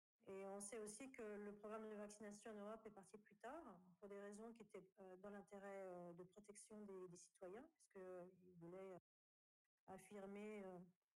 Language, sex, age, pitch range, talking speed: French, female, 40-59, 180-210 Hz, 170 wpm